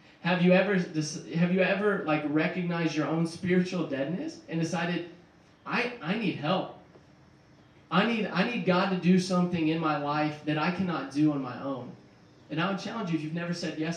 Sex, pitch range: male, 145-175 Hz